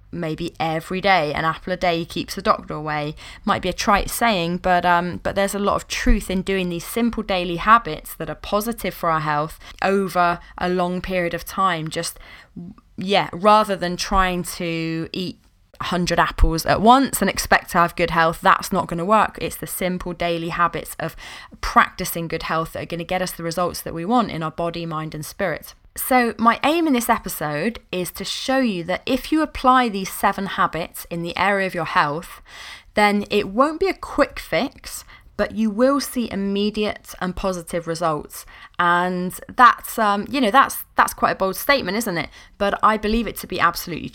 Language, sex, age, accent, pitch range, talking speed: English, female, 10-29, British, 170-210 Hz, 200 wpm